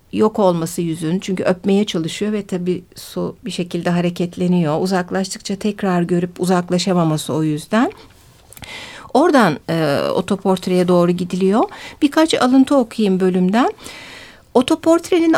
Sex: female